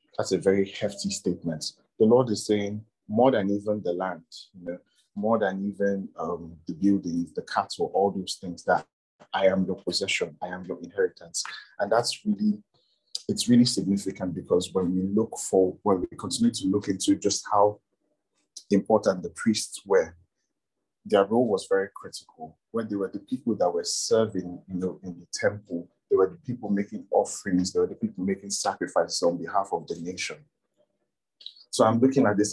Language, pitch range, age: English, 90-115 Hz, 30-49